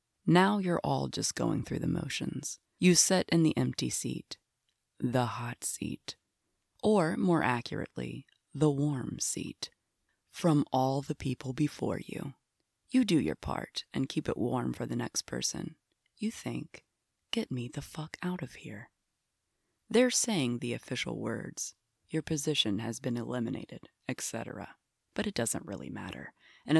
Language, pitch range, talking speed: English, 115-175 Hz, 150 wpm